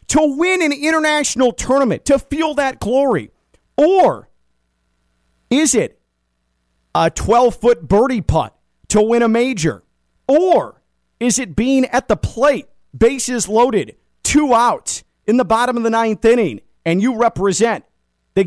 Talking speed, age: 135 wpm, 40-59